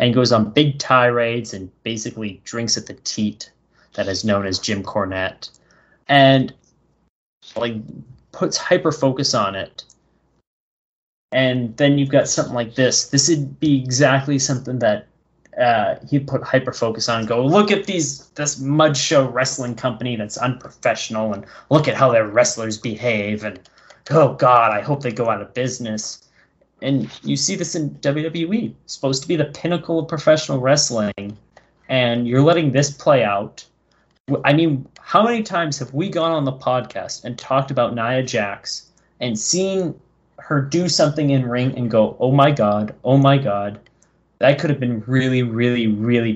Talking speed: 170 wpm